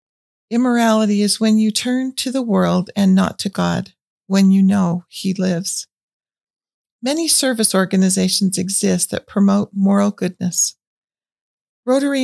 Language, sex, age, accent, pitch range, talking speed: English, female, 50-69, American, 185-220 Hz, 125 wpm